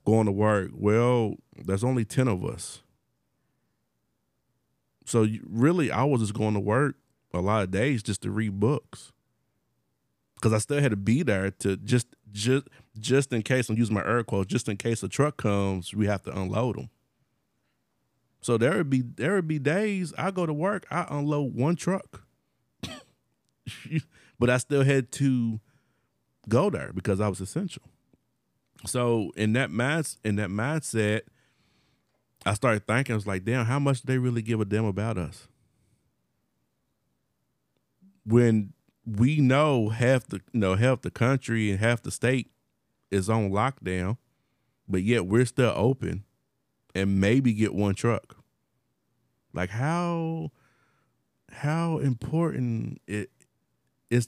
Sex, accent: male, American